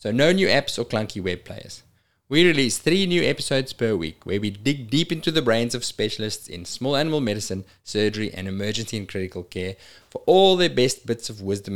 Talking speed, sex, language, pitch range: 210 wpm, male, English, 100-135 Hz